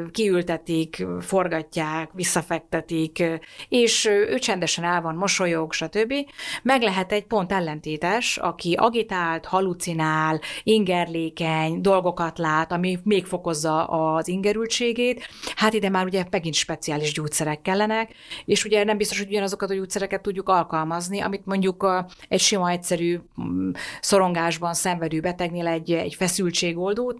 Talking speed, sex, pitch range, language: 120 wpm, female, 165-205 Hz, Hungarian